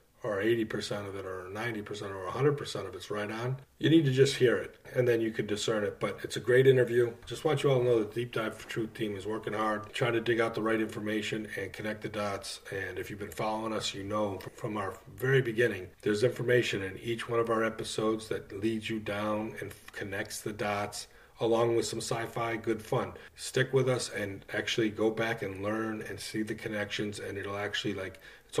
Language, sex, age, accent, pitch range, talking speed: English, male, 40-59, American, 105-115 Hz, 225 wpm